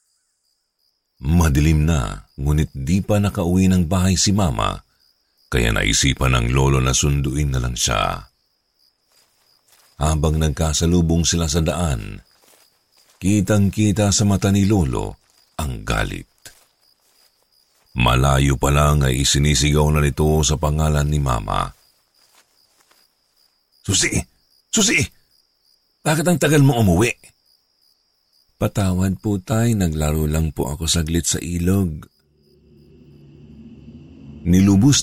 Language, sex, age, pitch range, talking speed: Filipino, male, 50-69, 75-95 Hz, 105 wpm